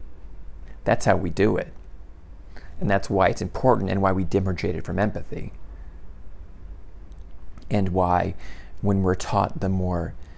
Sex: male